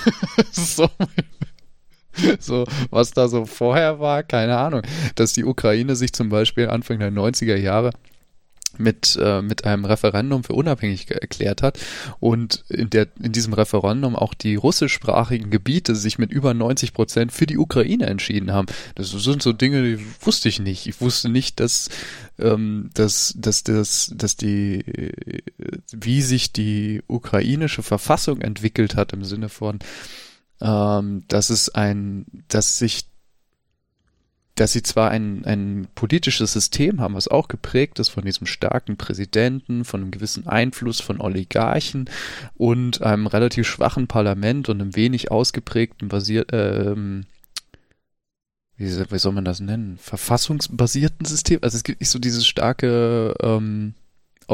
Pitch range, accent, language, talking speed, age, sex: 105-125 Hz, German, German, 140 wpm, 20-39, male